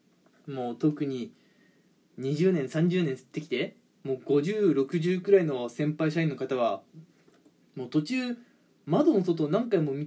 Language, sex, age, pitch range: Japanese, male, 20-39, 140-190 Hz